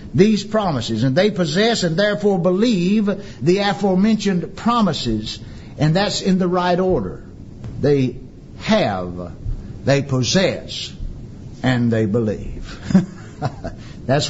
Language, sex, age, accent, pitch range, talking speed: English, male, 60-79, American, 140-215 Hz, 105 wpm